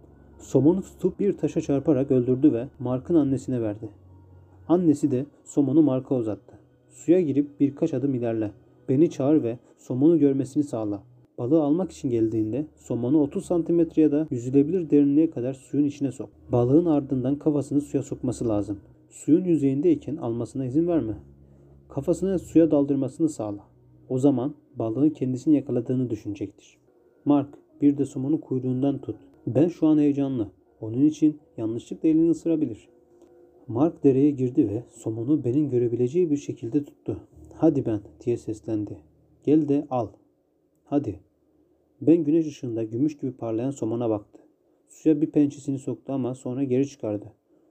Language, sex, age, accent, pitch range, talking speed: Turkish, male, 40-59, native, 110-150 Hz, 140 wpm